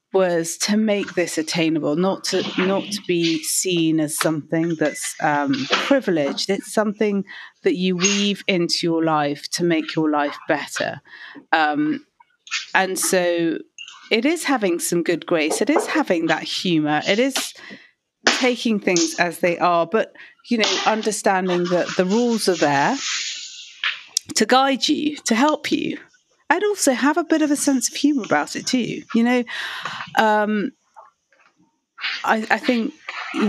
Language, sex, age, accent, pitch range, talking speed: English, female, 40-59, British, 170-250 Hz, 150 wpm